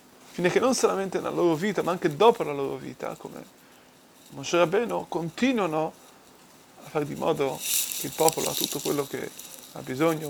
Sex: male